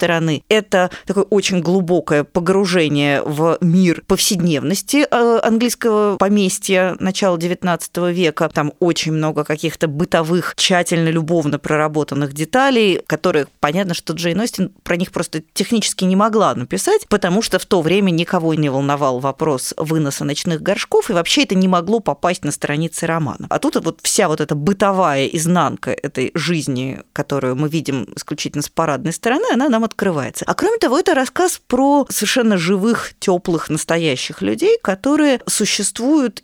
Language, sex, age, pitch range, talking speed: Russian, female, 20-39, 155-210 Hz, 145 wpm